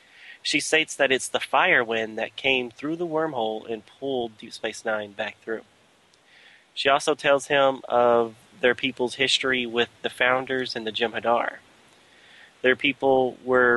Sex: male